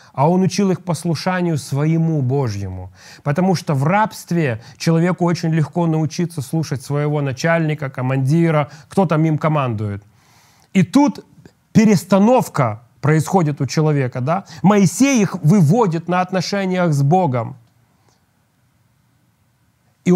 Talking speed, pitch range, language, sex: 115 wpm, 140-180 Hz, Russian, male